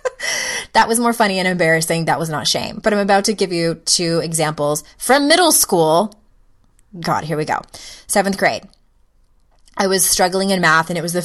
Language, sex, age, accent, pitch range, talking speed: English, female, 20-39, American, 160-215 Hz, 190 wpm